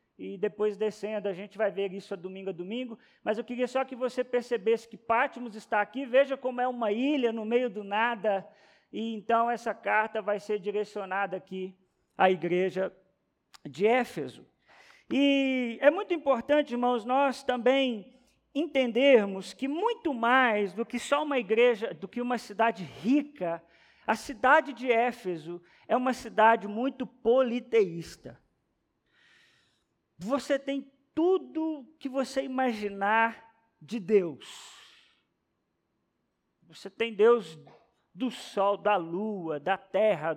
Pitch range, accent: 200-260 Hz, Brazilian